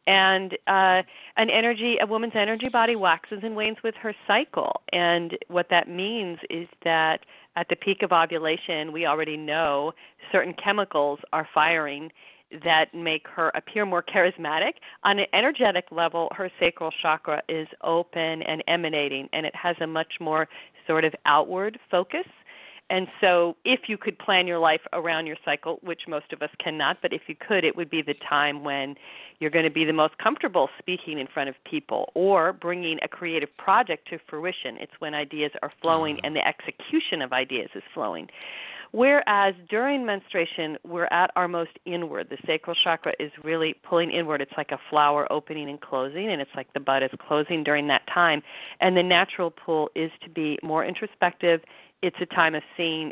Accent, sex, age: American, female, 40-59